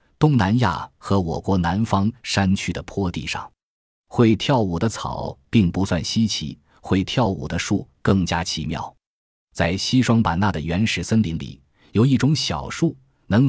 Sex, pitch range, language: male, 85-120 Hz, Chinese